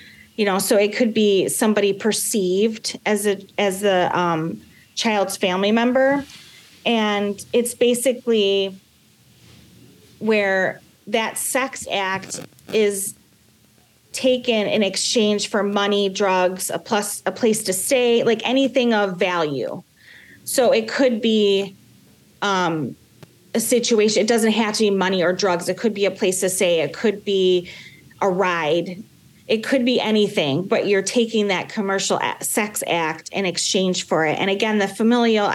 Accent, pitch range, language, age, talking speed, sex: American, 185-225 Hz, English, 30-49, 145 wpm, female